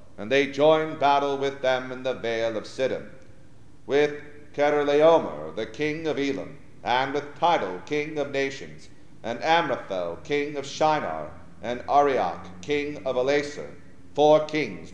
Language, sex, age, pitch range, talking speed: English, male, 50-69, 125-150 Hz, 140 wpm